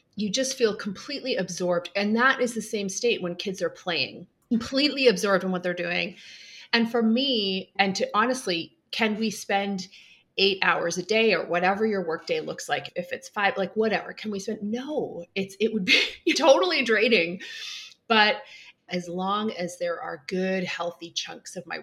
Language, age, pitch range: English, 30-49, 175-225 Hz